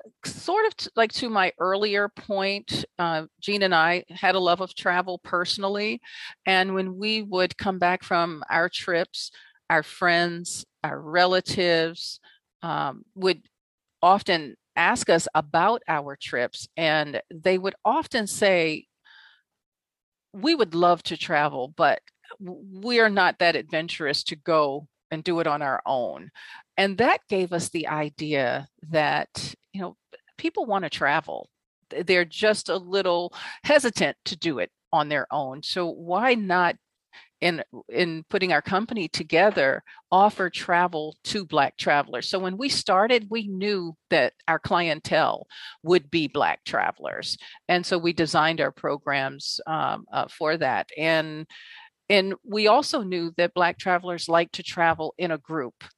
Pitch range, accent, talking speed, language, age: 160-195 Hz, American, 145 wpm, English, 40-59